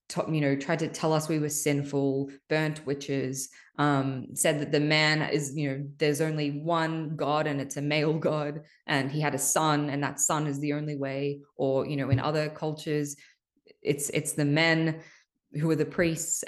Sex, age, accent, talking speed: female, 20-39, Australian, 195 wpm